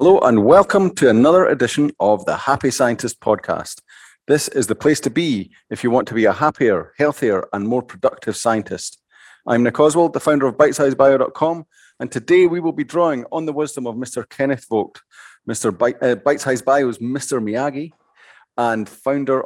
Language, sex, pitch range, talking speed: English, male, 115-145 Hz, 175 wpm